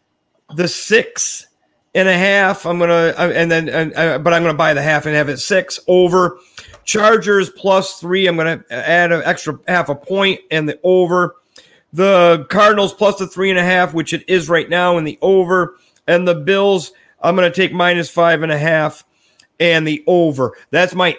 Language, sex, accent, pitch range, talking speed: English, male, American, 165-200 Hz, 185 wpm